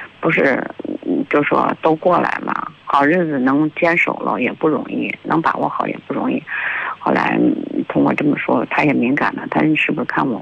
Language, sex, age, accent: Chinese, female, 50-69, native